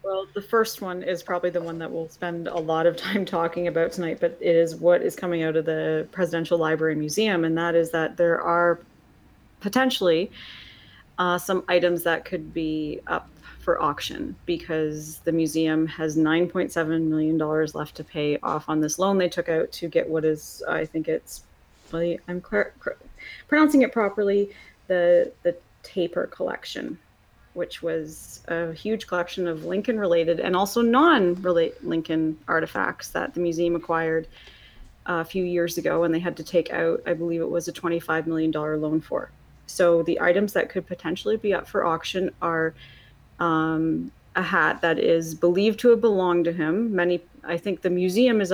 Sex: female